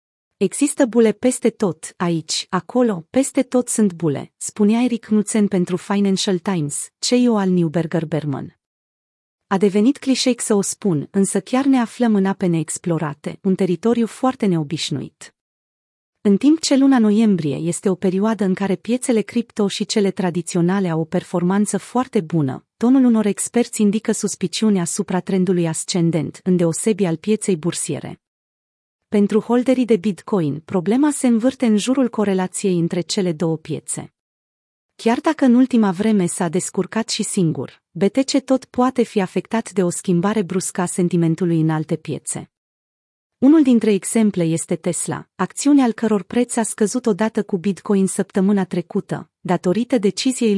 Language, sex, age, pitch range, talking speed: Romanian, female, 30-49, 175-225 Hz, 145 wpm